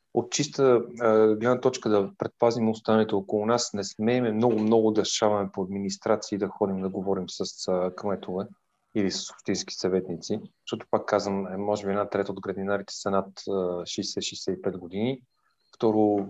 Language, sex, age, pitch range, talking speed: Bulgarian, male, 30-49, 100-115 Hz, 155 wpm